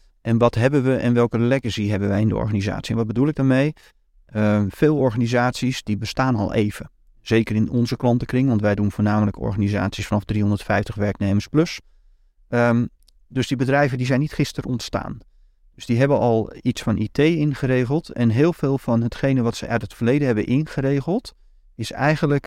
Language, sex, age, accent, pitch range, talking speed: Dutch, male, 30-49, Dutch, 110-140 Hz, 180 wpm